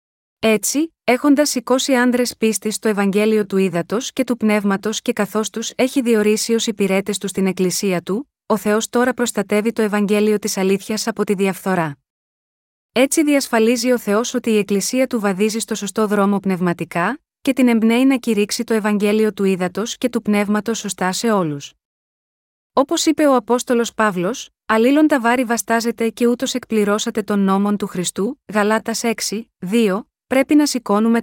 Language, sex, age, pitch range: Greek, female, 30-49, 200-245 Hz